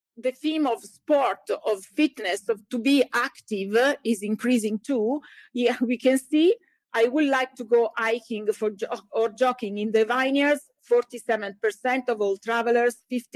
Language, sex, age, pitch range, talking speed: English, female, 40-59, 215-255 Hz, 155 wpm